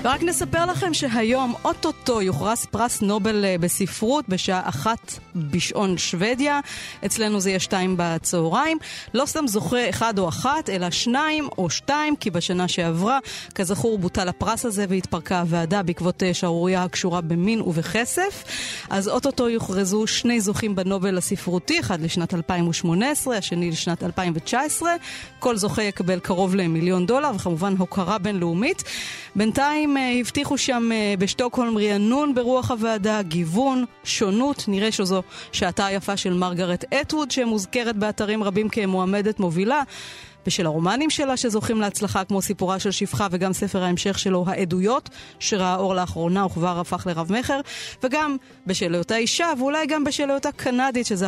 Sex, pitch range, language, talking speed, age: female, 185-250 Hz, Hebrew, 135 wpm, 30-49